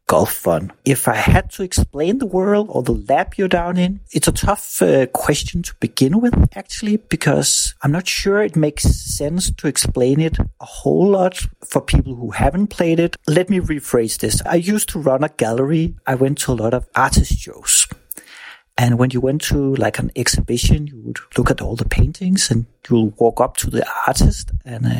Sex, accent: male, Danish